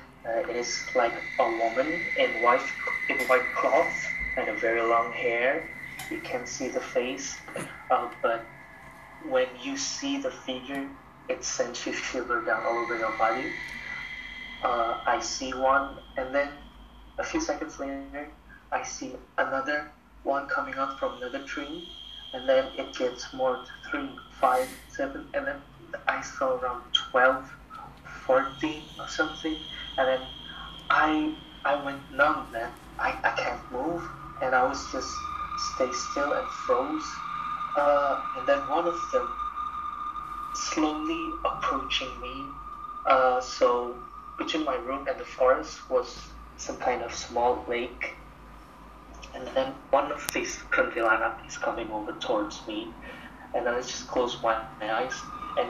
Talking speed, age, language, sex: 145 wpm, 20-39, English, male